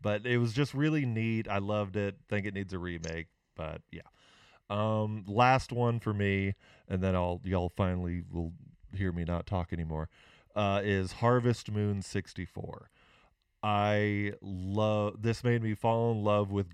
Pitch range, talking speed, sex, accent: 90-105 Hz, 165 wpm, male, American